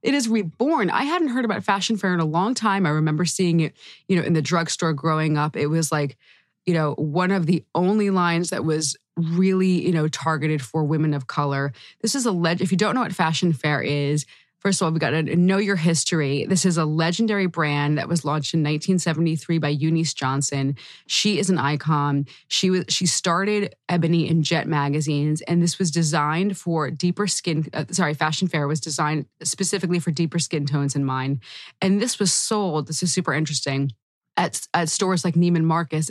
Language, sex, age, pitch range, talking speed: English, female, 20-39, 150-185 Hz, 205 wpm